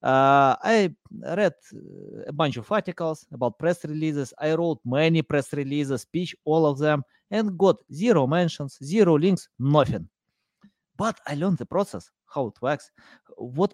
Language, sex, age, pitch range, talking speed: English, male, 30-49, 125-165 Hz, 155 wpm